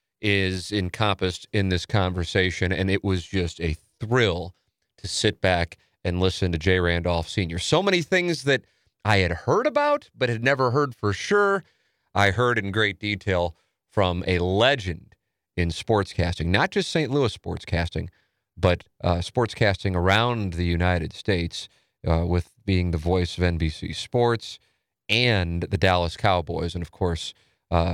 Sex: male